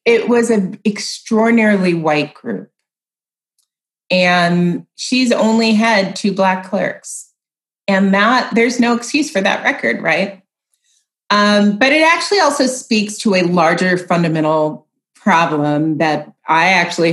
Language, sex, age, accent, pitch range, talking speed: English, female, 30-49, American, 175-215 Hz, 125 wpm